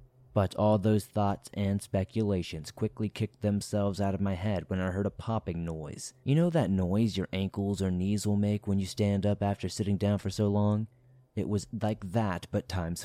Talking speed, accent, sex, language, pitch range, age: 205 wpm, American, male, English, 95-115 Hz, 30-49